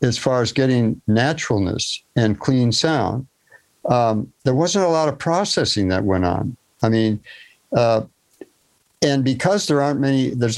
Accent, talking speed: American, 155 wpm